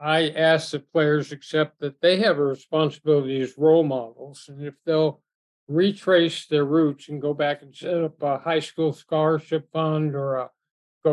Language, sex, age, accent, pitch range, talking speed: English, male, 60-79, American, 150-165 Hz, 180 wpm